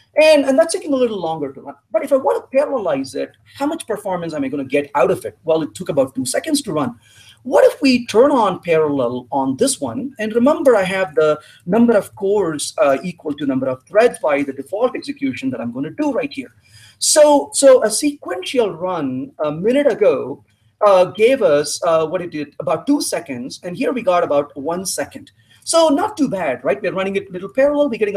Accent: Indian